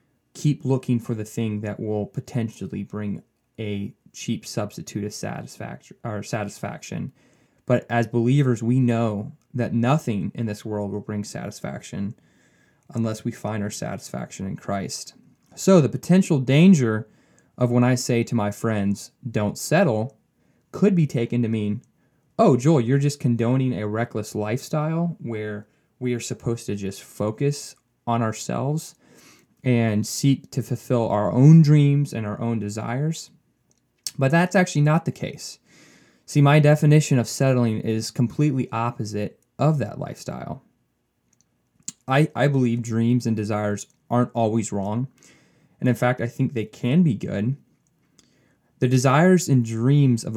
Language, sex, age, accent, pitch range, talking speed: English, male, 20-39, American, 110-140 Hz, 145 wpm